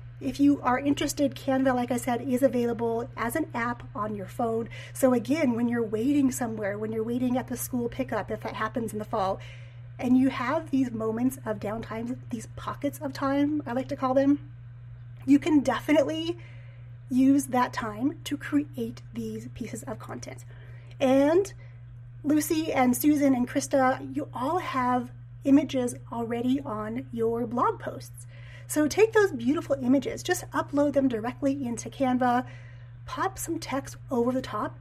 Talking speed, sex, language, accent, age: 165 wpm, female, English, American, 30-49